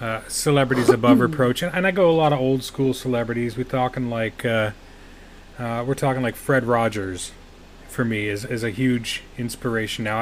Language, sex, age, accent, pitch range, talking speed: English, male, 30-49, American, 105-130 Hz, 190 wpm